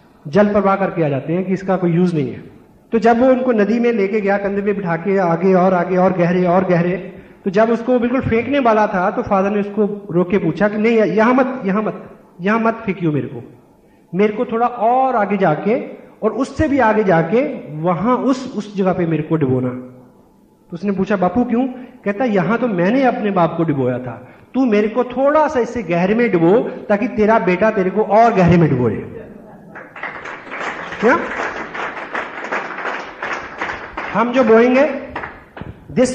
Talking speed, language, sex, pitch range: 185 wpm, Hindi, male, 175-235 Hz